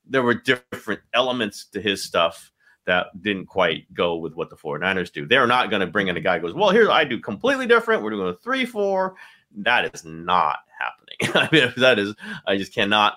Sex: male